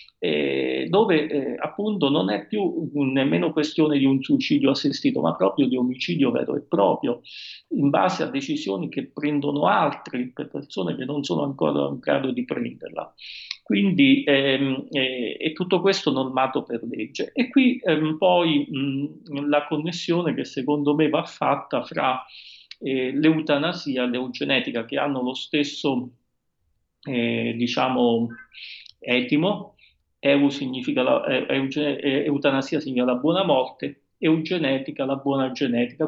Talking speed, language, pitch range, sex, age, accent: 130 wpm, Italian, 130-160 Hz, male, 40-59, native